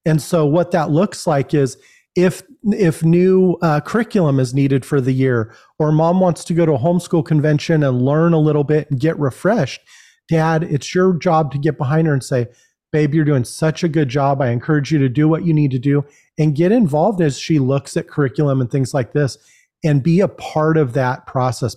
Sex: male